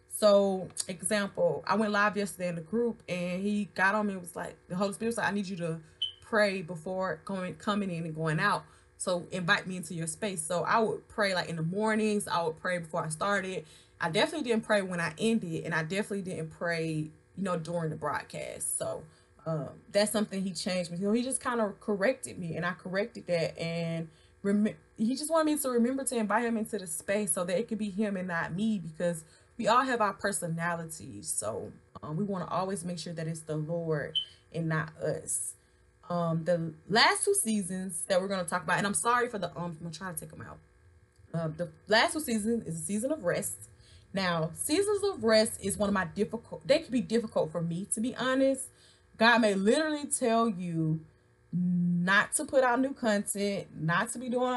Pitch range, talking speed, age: 170-220 Hz, 220 wpm, 20-39